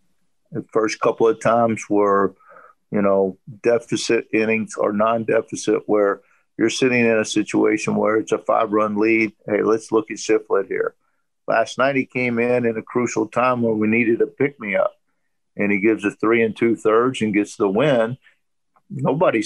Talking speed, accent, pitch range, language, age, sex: 175 wpm, American, 105-120 Hz, English, 50-69, male